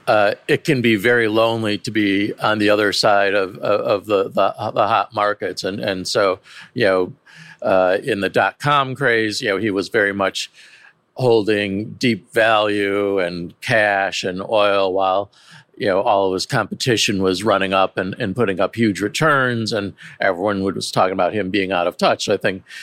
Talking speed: 185 wpm